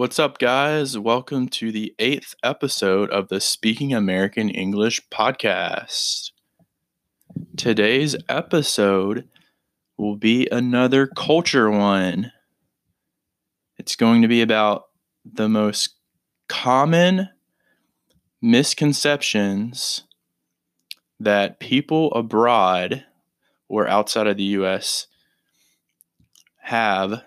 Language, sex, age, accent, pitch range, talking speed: English, male, 20-39, American, 105-125 Hz, 85 wpm